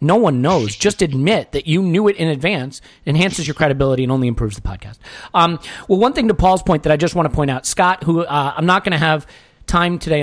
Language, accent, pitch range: English, American, 135-185 Hz